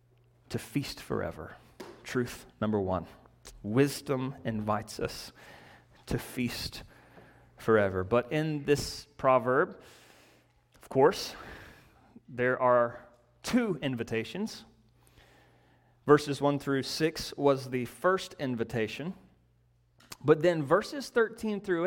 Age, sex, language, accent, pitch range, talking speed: 30-49, male, English, American, 120-190 Hz, 95 wpm